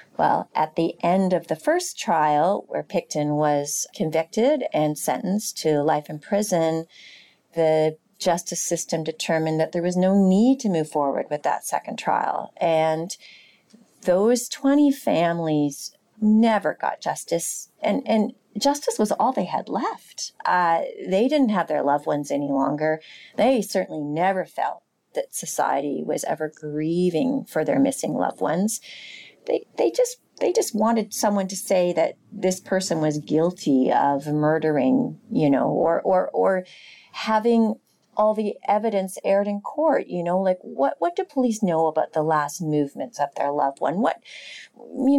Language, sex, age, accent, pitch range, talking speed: English, female, 40-59, American, 155-230 Hz, 155 wpm